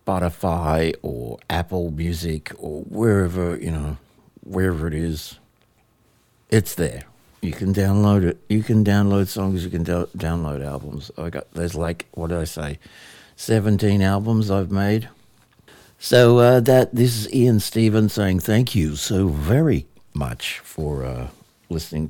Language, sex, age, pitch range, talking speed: English, male, 60-79, 85-110 Hz, 145 wpm